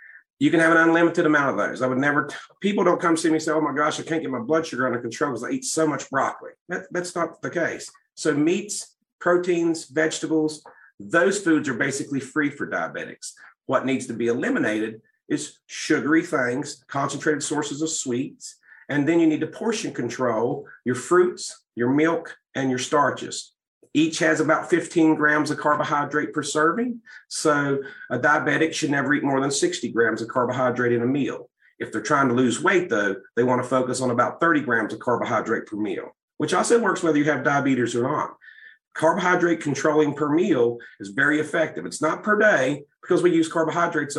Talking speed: 195 wpm